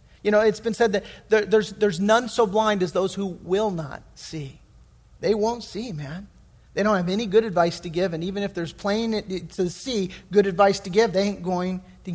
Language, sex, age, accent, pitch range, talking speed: English, male, 40-59, American, 200-260 Hz, 215 wpm